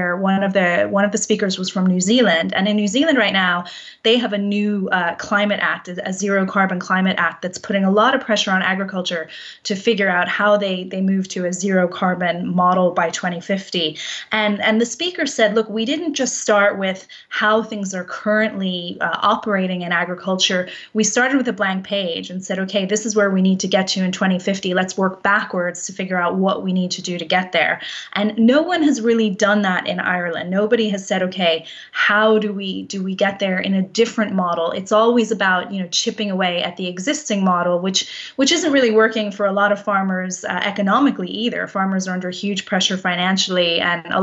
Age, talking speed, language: 20-39, 215 wpm, English